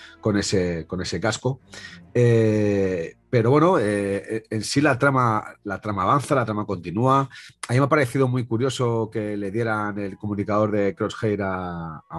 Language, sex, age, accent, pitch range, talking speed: Spanish, male, 30-49, Spanish, 95-120 Hz, 170 wpm